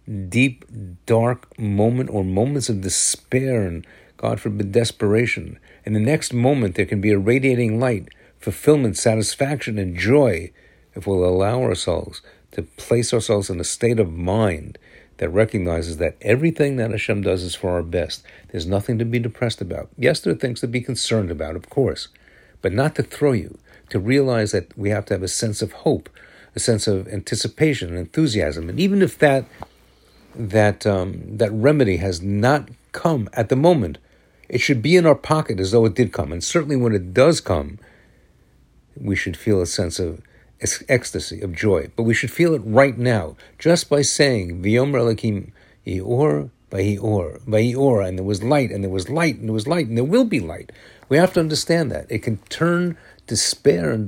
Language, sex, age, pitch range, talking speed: English, male, 50-69, 100-130 Hz, 190 wpm